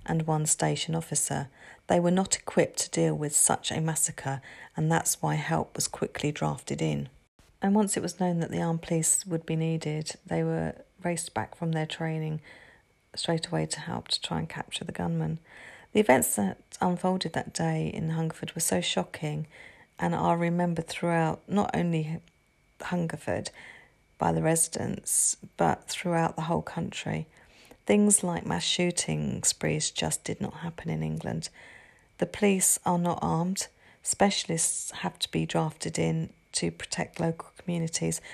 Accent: British